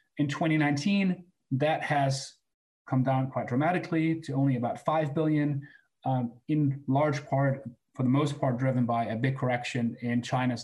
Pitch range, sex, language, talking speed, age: 120-145 Hz, male, English, 150 wpm, 30-49